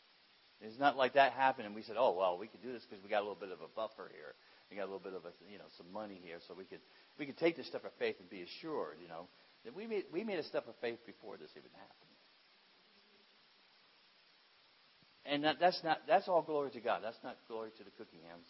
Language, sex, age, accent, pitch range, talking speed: English, male, 60-79, American, 110-160 Hz, 260 wpm